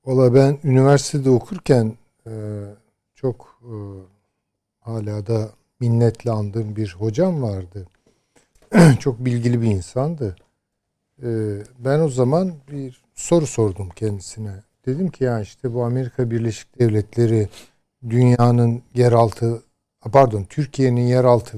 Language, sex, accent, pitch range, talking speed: Turkish, male, native, 105-135 Hz, 105 wpm